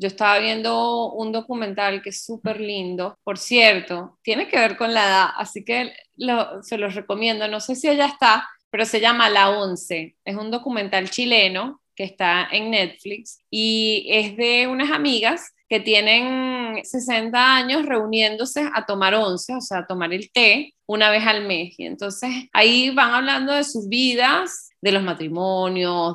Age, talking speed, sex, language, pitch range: 20-39, 170 wpm, female, Spanish, 195-265 Hz